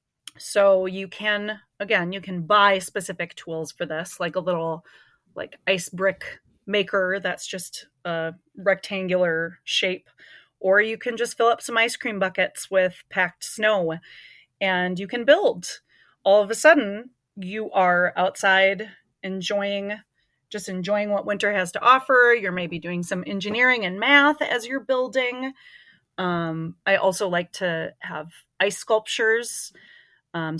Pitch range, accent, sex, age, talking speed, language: 175-215 Hz, American, female, 30-49, 145 wpm, English